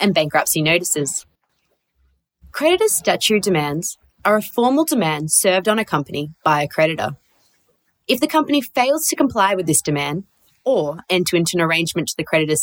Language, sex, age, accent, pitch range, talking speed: English, female, 20-39, Australian, 155-220 Hz, 160 wpm